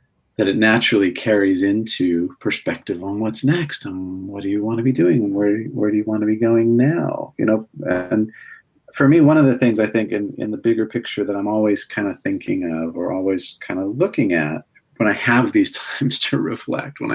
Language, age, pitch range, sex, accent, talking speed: English, 40-59, 100-135 Hz, male, American, 220 wpm